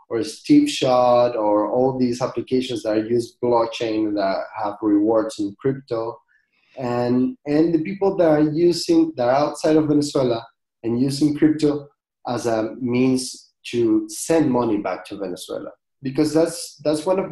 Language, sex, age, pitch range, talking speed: English, male, 20-39, 115-155 Hz, 150 wpm